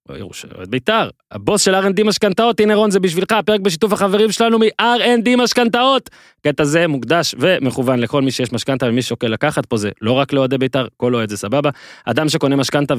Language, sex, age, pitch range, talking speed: Hebrew, male, 20-39, 130-205 Hz, 180 wpm